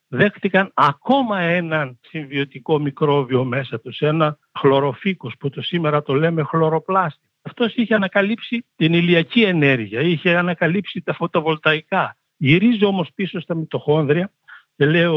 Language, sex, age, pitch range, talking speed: Greek, male, 60-79, 145-195 Hz, 120 wpm